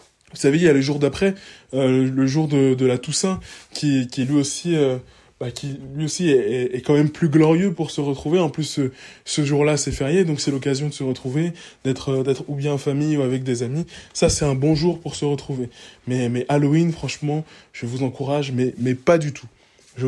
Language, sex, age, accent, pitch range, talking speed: French, male, 20-39, French, 135-160 Hz, 240 wpm